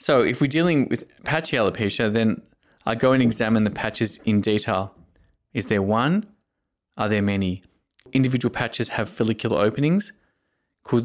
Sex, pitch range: male, 105-120 Hz